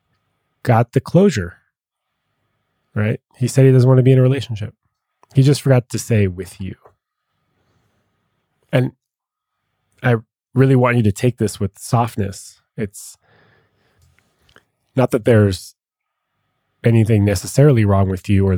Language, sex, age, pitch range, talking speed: English, male, 20-39, 100-130 Hz, 130 wpm